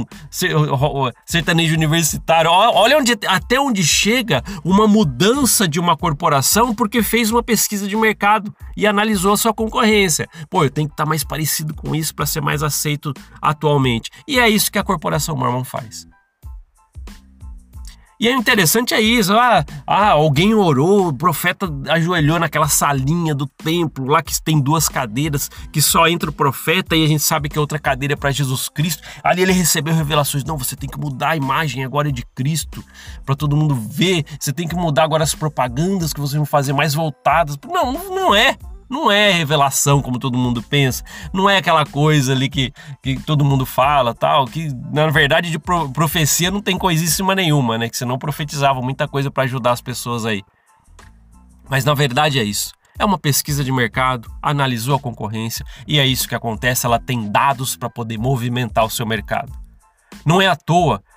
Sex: male